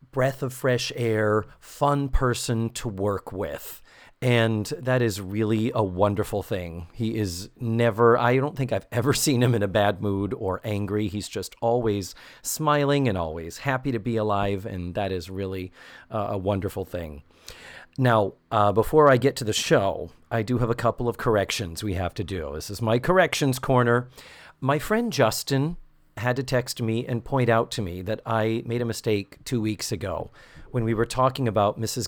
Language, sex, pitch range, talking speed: English, male, 105-130 Hz, 185 wpm